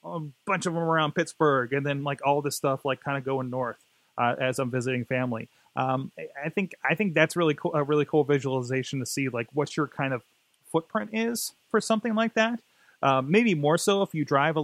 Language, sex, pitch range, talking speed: English, male, 135-190 Hz, 225 wpm